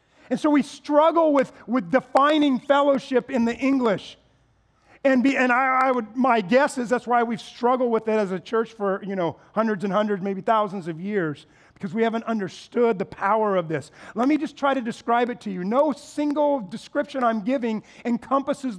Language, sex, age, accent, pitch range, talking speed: English, male, 40-59, American, 215-275 Hz, 200 wpm